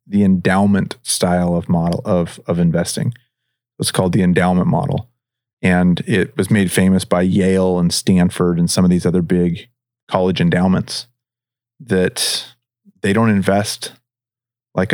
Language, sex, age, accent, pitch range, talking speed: English, male, 30-49, American, 90-120 Hz, 140 wpm